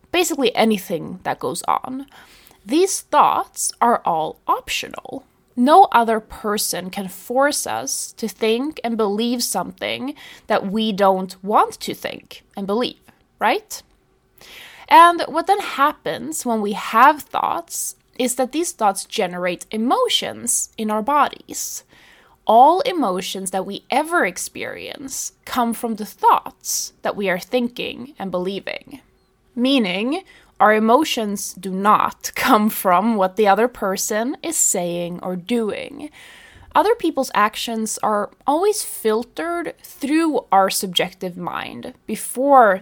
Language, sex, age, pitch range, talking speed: English, female, 20-39, 195-290 Hz, 125 wpm